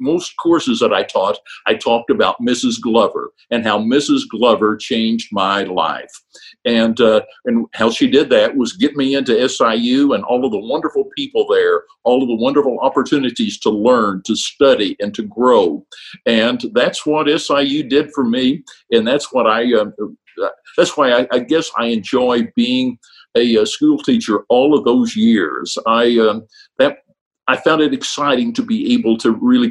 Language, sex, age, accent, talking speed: English, male, 60-79, American, 180 wpm